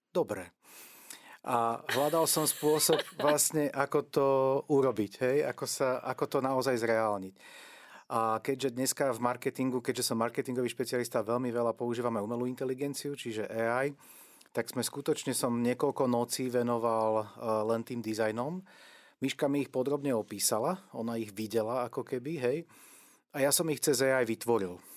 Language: Slovak